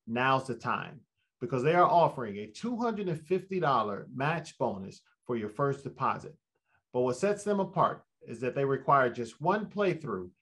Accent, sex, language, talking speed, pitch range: American, male, English, 155 wpm, 125-170 Hz